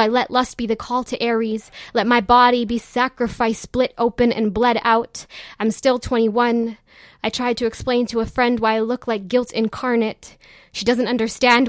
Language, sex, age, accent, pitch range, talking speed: English, female, 10-29, American, 230-250 Hz, 190 wpm